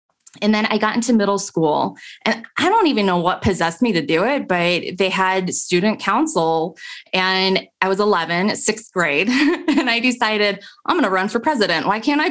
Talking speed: 195 wpm